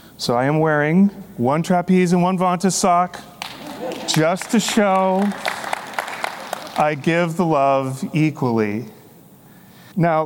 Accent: American